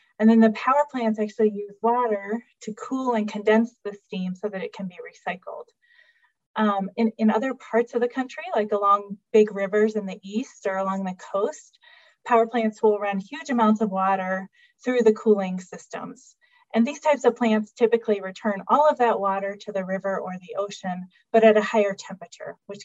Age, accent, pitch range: 20-39, American, 195-240 Hz